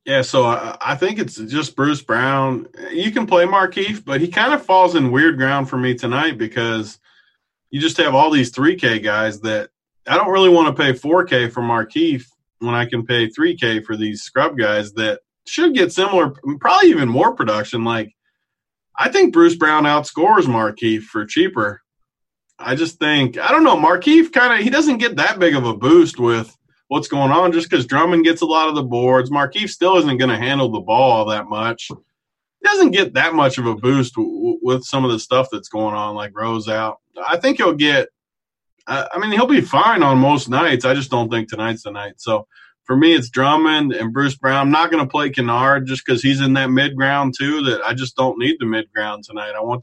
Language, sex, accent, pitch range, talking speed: English, male, American, 115-170 Hz, 215 wpm